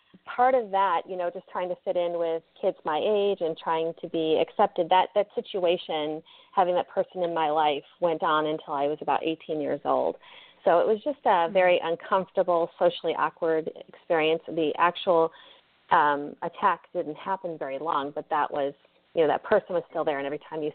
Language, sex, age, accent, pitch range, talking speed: English, female, 30-49, American, 160-190 Hz, 200 wpm